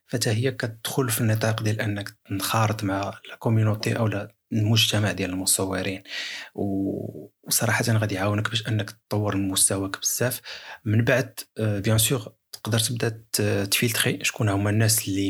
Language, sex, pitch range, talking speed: Arabic, male, 100-115 Hz, 125 wpm